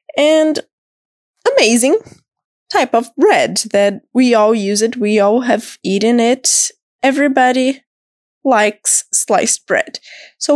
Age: 20-39